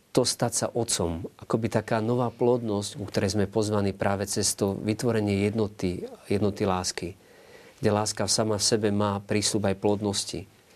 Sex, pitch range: male, 95-110 Hz